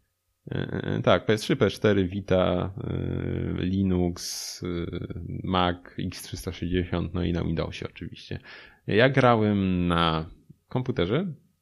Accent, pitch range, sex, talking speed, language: native, 90-120 Hz, male, 95 wpm, Polish